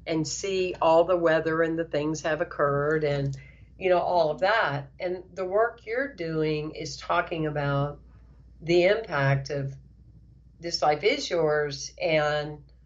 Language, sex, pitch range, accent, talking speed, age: English, female, 145-180 Hz, American, 150 wpm, 50-69